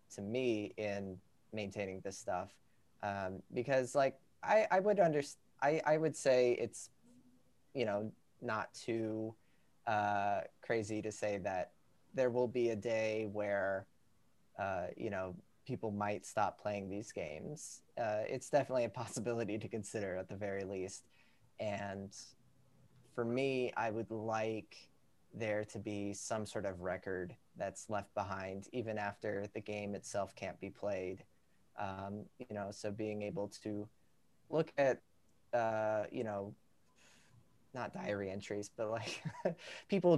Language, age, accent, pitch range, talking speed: English, 20-39, American, 100-120 Hz, 140 wpm